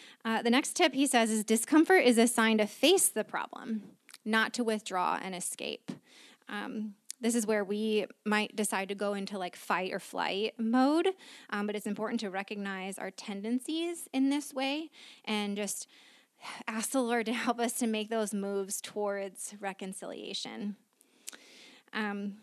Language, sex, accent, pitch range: English, female, American, 200-240 Hz